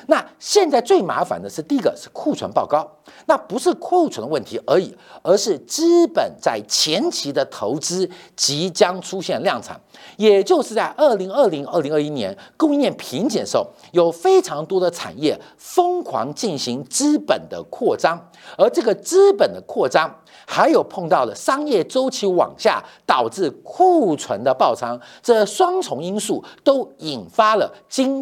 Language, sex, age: Chinese, male, 50-69